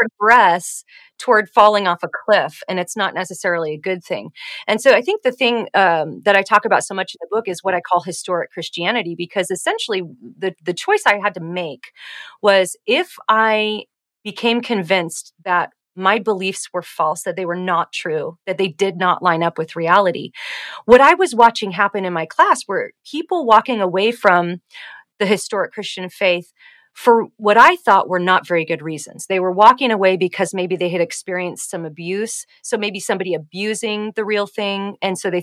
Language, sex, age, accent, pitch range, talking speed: English, female, 30-49, American, 180-215 Hz, 195 wpm